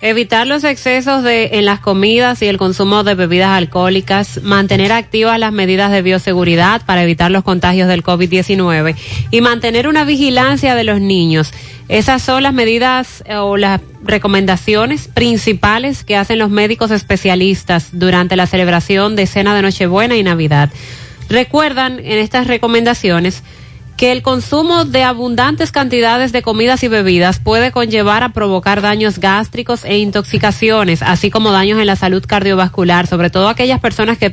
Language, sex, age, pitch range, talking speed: Spanish, female, 30-49, 175-225 Hz, 150 wpm